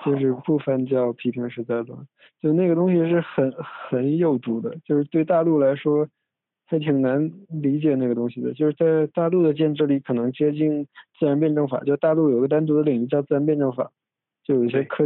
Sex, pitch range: male, 125-155 Hz